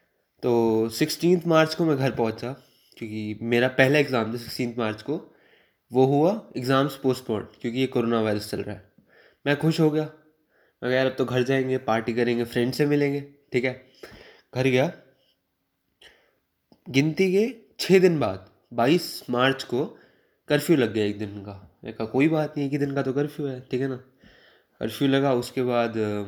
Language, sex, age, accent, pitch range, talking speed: Hindi, male, 20-39, native, 115-150 Hz, 175 wpm